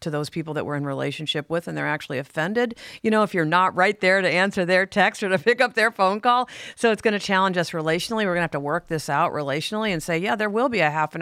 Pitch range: 150-185 Hz